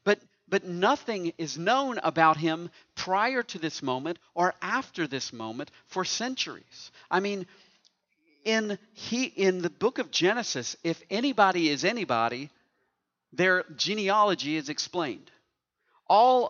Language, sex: English, male